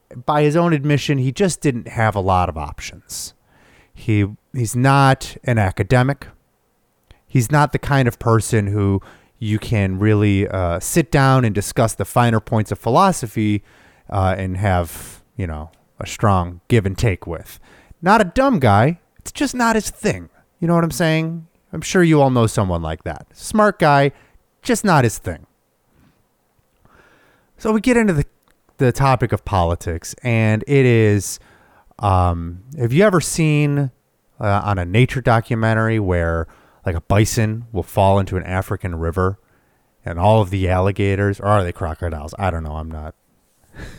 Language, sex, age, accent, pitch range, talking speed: English, male, 30-49, American, 95-135 Hz, 165 wpm